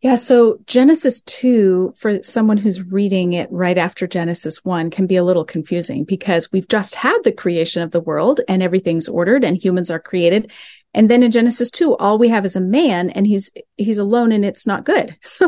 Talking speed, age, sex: 210 wpm, 30-49, female